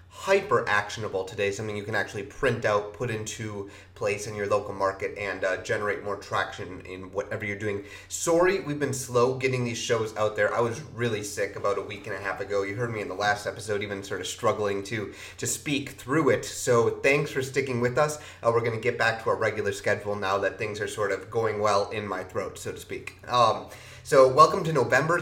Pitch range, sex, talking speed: 100-120 Hz, male, 230 wpm